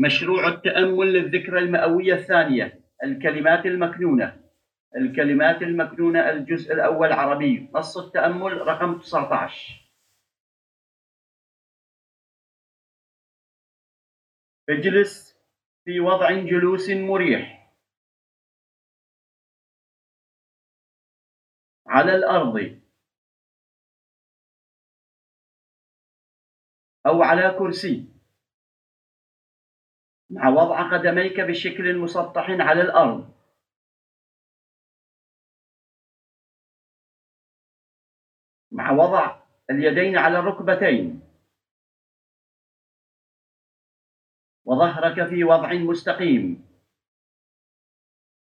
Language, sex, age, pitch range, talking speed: English, male, 50-69, 160-185 Hz, 50 wpm